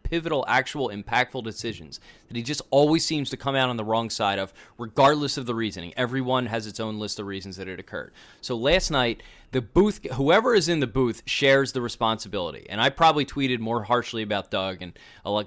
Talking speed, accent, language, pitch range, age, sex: 210 wpm, American, English, 105-135 Hz, 20-39, male